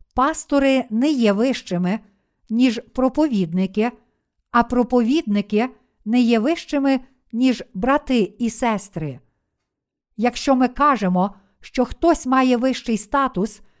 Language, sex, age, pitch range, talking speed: Ukrainian, female, 50-69, 200-260 Hz, 100 wpm